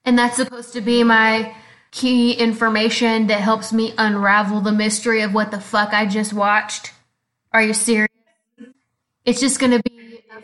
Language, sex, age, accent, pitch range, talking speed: English, female, 10-29, American, 210-240 Hz, 165 wpm